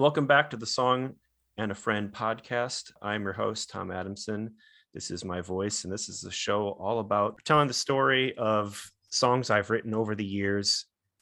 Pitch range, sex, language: 90-115 Hz, male, English